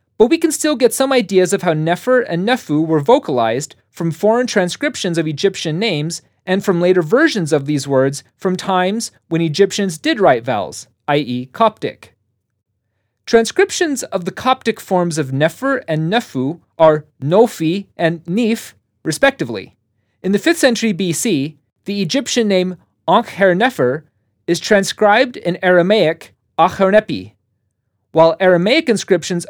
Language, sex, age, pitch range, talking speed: English, male, 30-49, 145-205 Hz, 140 wpm